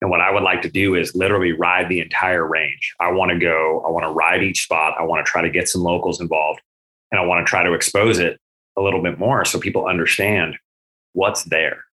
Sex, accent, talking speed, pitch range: male, American, 245 wpm, 80-105 Hz